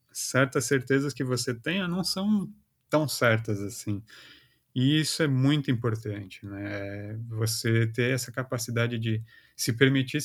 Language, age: Portuguese, 30-49